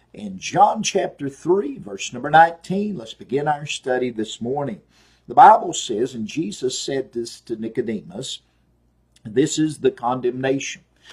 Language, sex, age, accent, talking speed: English, male, 50-69, American, 140 wpm